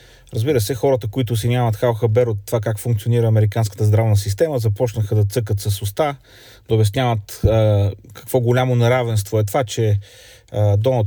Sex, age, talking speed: male, 30-49, 165 wpm